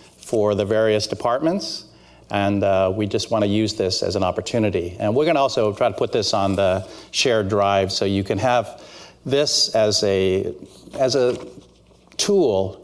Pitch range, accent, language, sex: 95-120 Hz, American, English, male